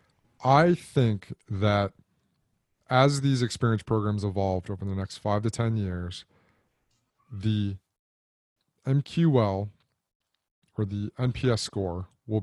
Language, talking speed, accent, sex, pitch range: English, 105 wpm, American, male, 105-125 Hz